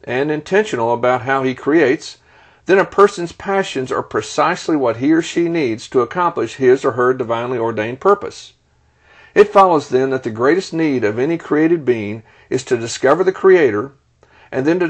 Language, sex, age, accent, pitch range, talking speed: English, male, 50-69, American, 120-165 Hz, 175 wpm